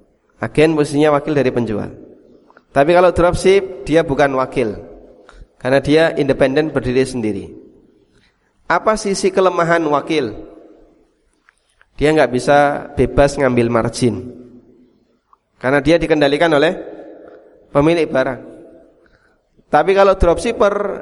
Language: Indonesian